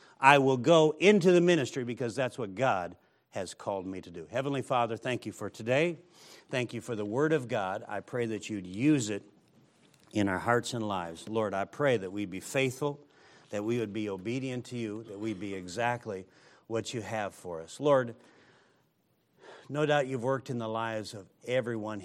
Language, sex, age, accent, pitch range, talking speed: English, male, 60-79, American, 100-125 Hz, 195 wpm